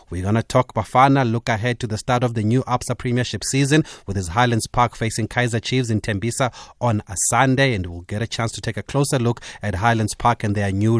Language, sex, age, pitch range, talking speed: English, male, 30-49, 105-125 Hz, 240 wpm